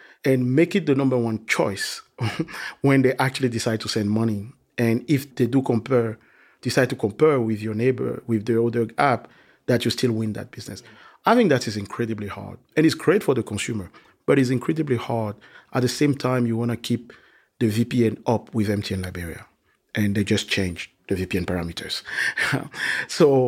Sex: male